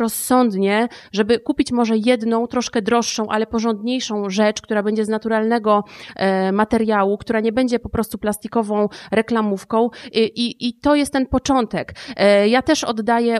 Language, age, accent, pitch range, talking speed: Polish, 30-49, native, 215-235 Hz, 145 wpm